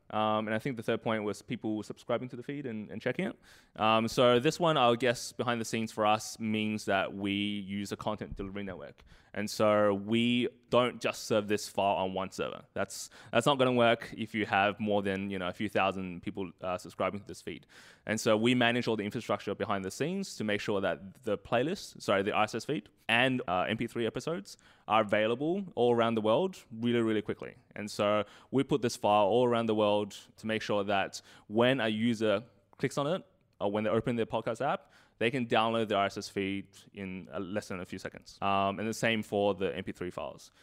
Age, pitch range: 20-39, 100-120 Hz